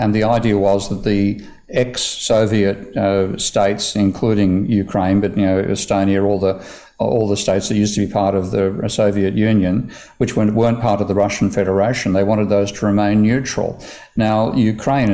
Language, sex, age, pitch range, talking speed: English, male, 50-69, 100-115 Hz, 180 wpm